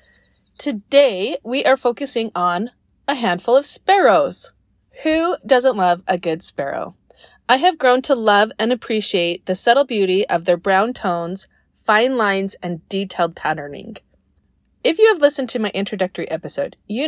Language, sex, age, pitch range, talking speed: English, female, 30-49, 185-255 Hz, 150 wpm